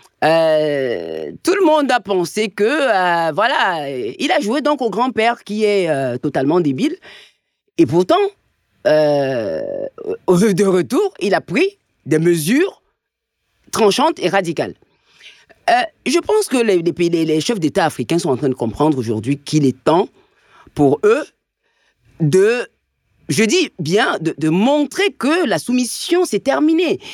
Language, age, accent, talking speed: French, 40-59, French, 145 wpm